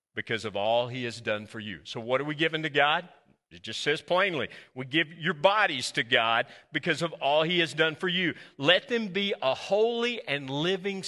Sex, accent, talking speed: male, American, 215 wpm